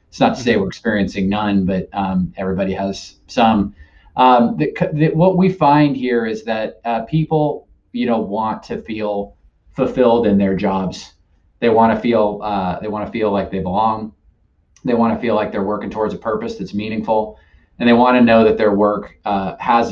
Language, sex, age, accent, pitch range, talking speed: English, male, 30-49, American, 95-120 Hz, 190 wpm